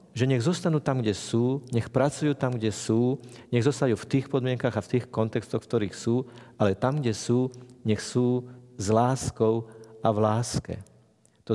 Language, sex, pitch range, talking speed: Slovak, male, 110-135 Hz, 180 wpm